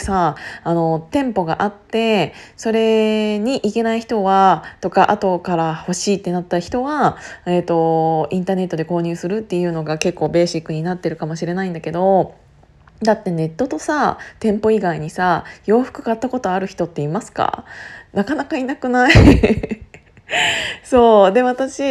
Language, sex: Japanese, female